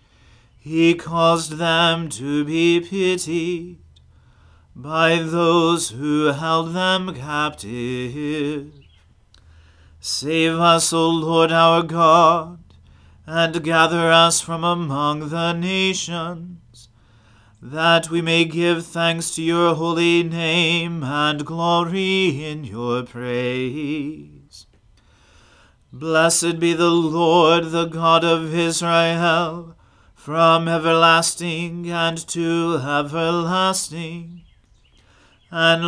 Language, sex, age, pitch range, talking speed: English, male, 40-59, 150-170 Hz, 90 wpm